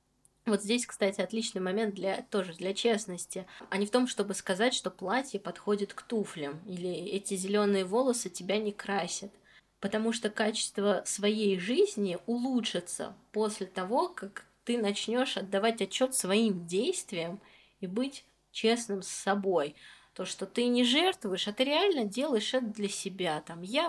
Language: Russian